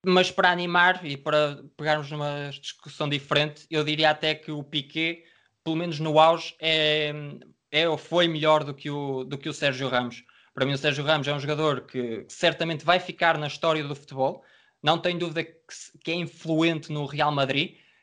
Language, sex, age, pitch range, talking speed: Portuguese, male, 20-39, 130-160 Hz, 195 wpm